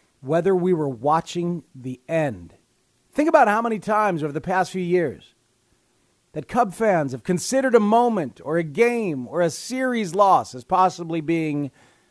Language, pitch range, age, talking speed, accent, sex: English, 145-215 Hz, 40-59, 165 wpm, American, male